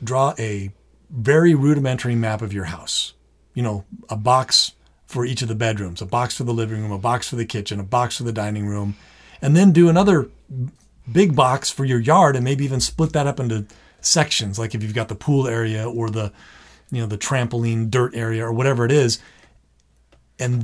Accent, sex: American, male